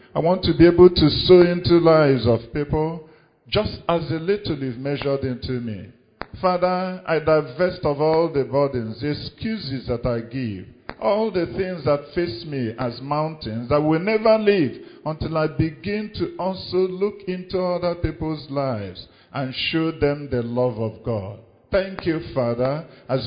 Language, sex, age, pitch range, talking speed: English, male, 50-69, 125-180 Hz, 165 wpm